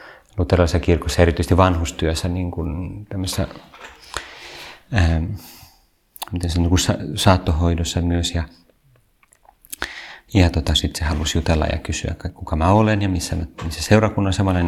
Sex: male